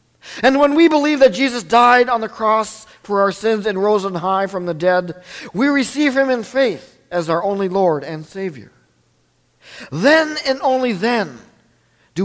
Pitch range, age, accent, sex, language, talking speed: 170-245 Hz, 50-69, American, male, English, 175 wpm